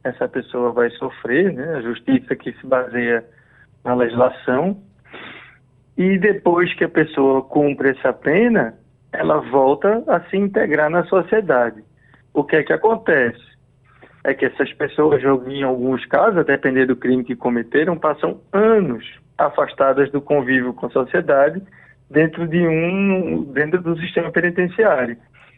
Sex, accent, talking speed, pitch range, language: male, Brazilian, 135 wpm, 135-205 Hz, Portuguese